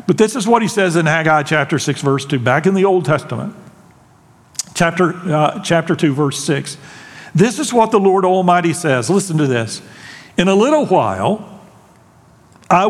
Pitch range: 135-175 Hz